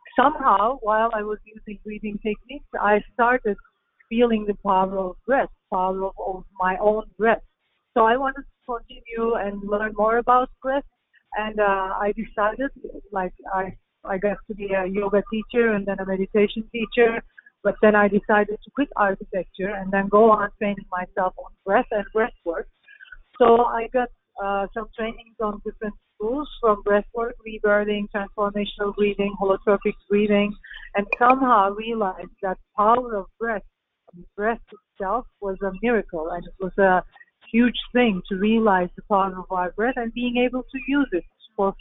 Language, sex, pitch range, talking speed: English, female, 200-235 Hz, 165 wpm